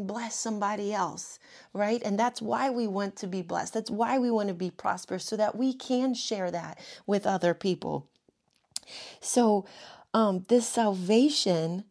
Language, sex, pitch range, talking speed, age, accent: English, female, 185-235 Hz, 160 wpm, 30-49, American